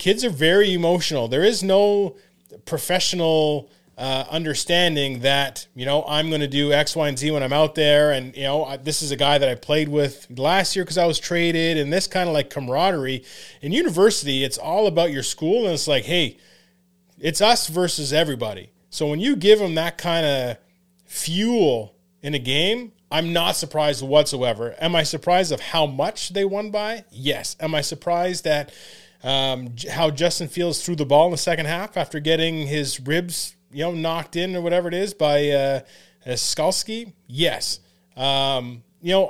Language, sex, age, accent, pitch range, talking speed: English, male, 30-49, American, 140-175 Hz, 190 wpm